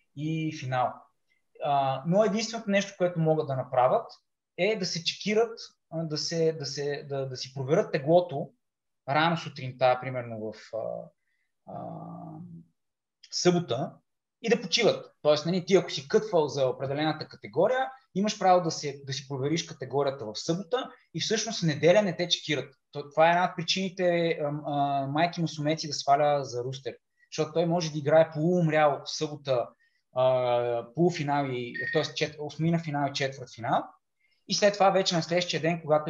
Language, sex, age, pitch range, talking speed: Bulgarian, male, 20-39, 140-185 Hz, 160 wpm